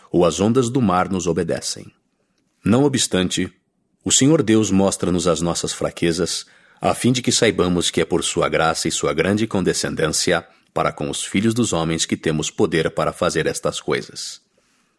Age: 50-69